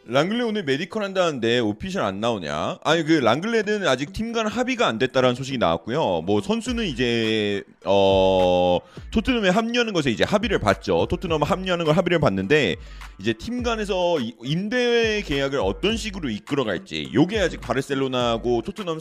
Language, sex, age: Korean, male, 30-49